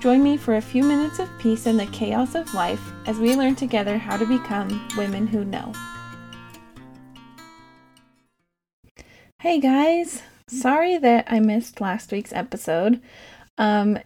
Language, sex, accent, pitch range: English, female, American, 205-245 Hz